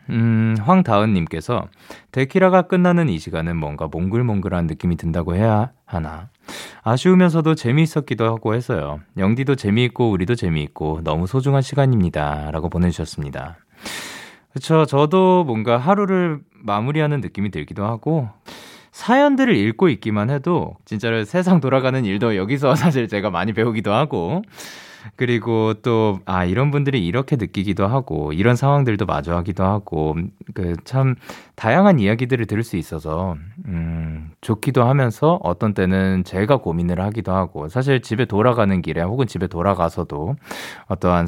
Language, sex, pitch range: Korean, male, 85-130 Hz